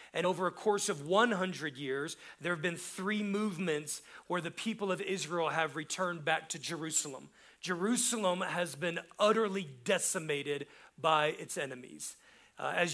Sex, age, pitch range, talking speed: male, 40-59, 160-195 Hz, 150 wpm